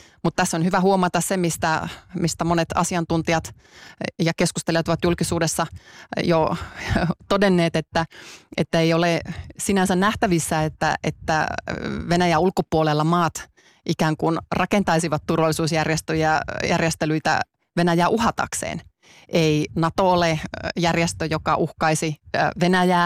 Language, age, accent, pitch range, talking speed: Finnish, 30-49, native, 155-180 Hz, 105 wpm